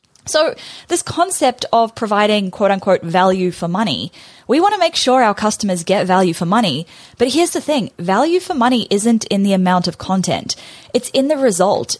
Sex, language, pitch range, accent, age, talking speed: female, English, 175-240 Hz, Australian, 10-29, 185 wpm